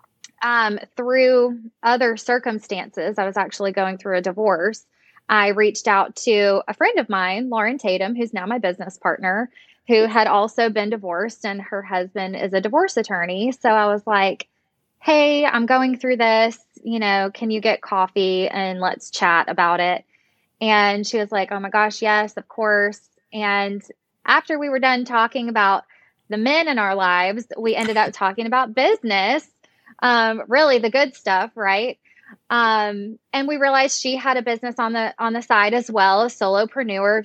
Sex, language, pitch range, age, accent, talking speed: female, English, 200-240 Hz, 20-39, American, 175 wpm